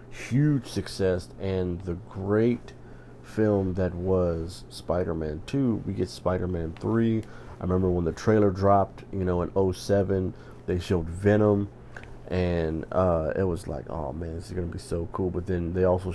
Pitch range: 90-105 Hz